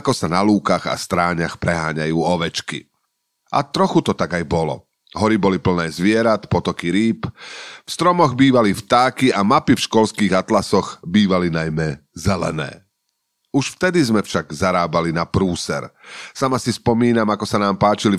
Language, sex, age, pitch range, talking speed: Slovak, male, 40-59, 90-115 Hz, 150 wpm